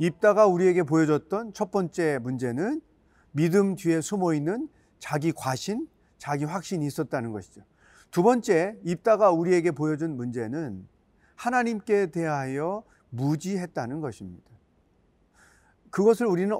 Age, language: 40-59, Korean